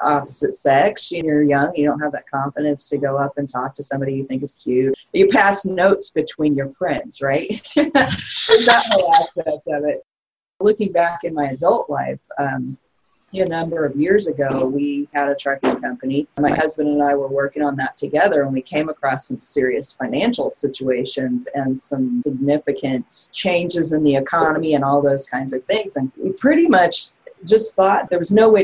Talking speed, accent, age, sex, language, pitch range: 190 wpm, American, 30-49, female, English, 140-180 Hz